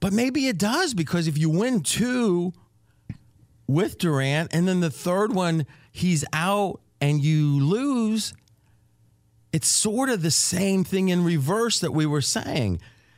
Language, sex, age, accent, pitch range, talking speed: English, male, 40-59, American, 110-145 Hz, 150 wpm